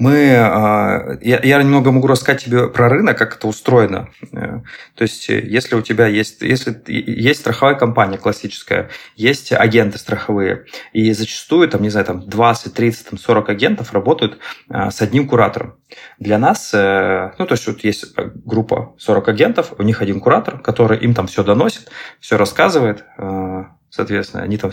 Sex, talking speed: male, 150 wpm